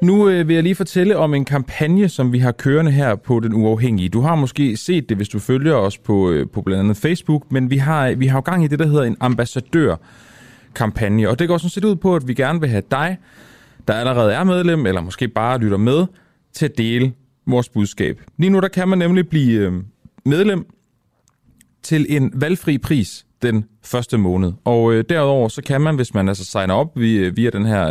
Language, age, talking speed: Danish, 30-49, 215 wpm